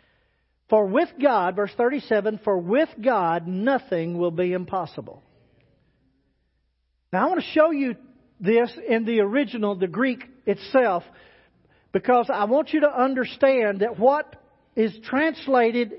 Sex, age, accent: male, 50-69, American